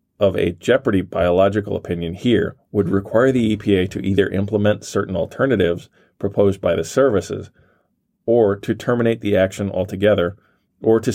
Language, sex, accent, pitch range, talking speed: English, male, American, 90-105 Hz, 145 wpm